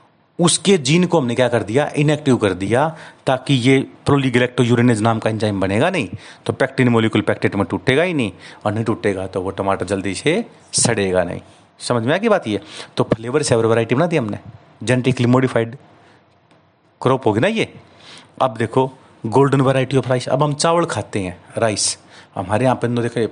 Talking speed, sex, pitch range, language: 190 wpm, male, 110-135 Hz, Hindi